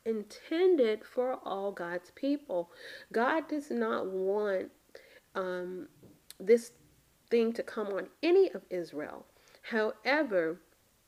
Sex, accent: female, American